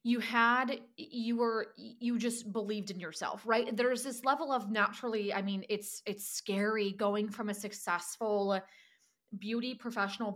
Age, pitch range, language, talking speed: 20-39, 205-245 Hz, English, 150 wpm